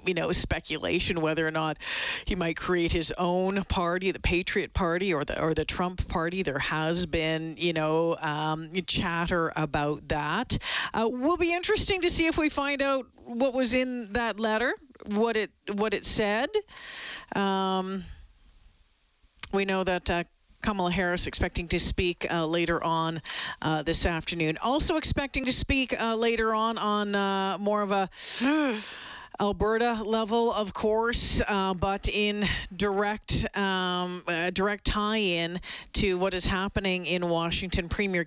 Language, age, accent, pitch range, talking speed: English, 40-59, American, 170-215 Hz, 150 wpm